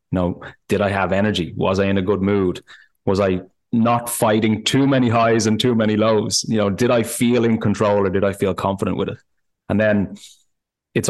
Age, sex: 20-39, male